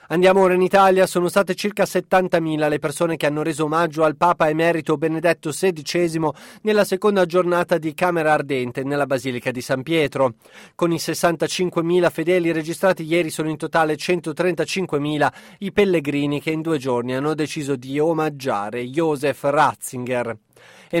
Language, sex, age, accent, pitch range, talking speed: Italian, male, 30-49, native, 145-175 Hz, 150 wpm